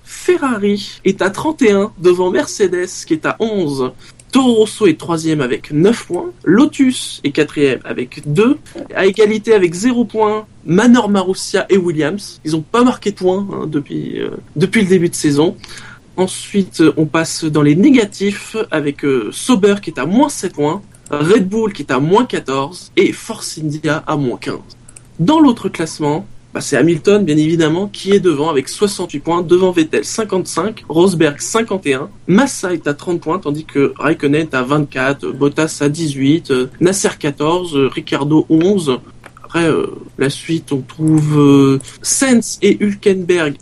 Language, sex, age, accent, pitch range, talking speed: French, male, 20-39, French, 150-210 Hz, 165 wpm